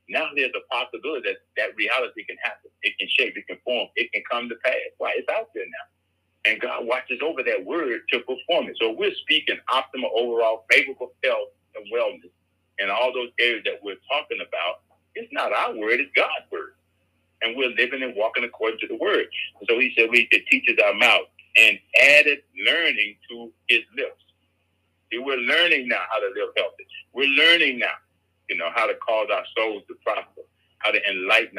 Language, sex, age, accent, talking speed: English, male, 50-69, American, 195 wpm